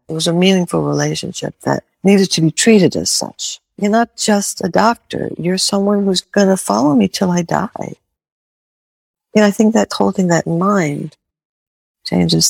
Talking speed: 175 wpm